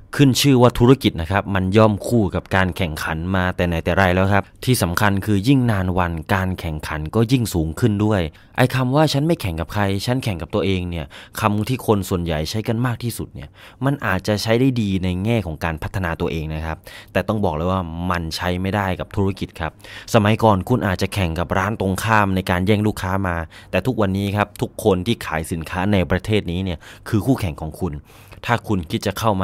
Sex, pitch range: male, 90-110 Hz